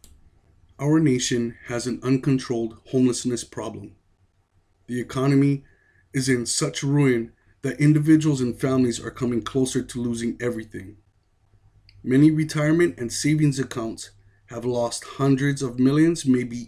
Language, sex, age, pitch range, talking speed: English, male, 30-49, 110-135 Hz, 120 wpm